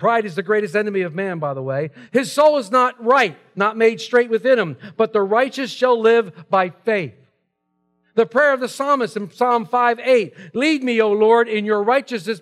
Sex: male